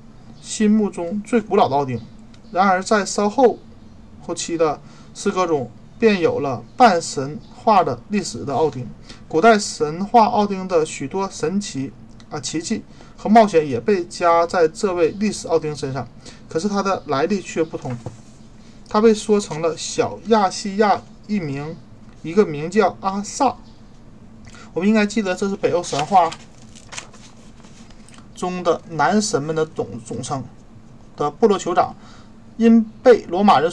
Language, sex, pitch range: Chinese, male, 140-210 Hz